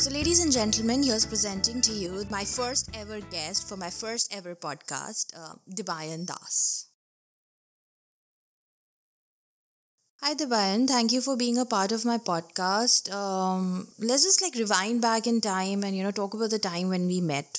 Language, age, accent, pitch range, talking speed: English, 20-39, Indian, 190-260 Hz, 165 wpm